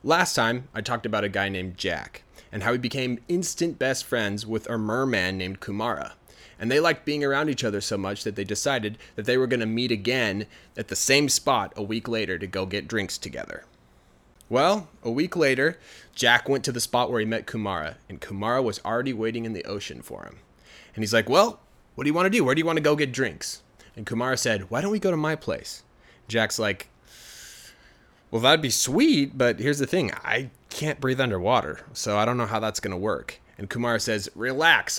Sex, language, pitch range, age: male, Chinese, 105-135 Hz, 20-39